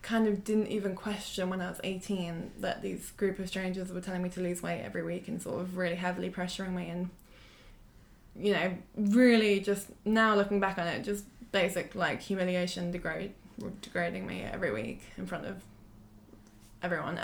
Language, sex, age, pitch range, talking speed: English, female, 20-39, 180-210 Hz, 180 wpm